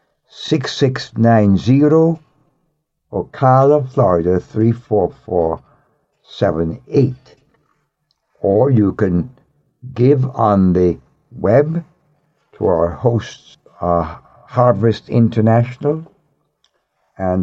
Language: English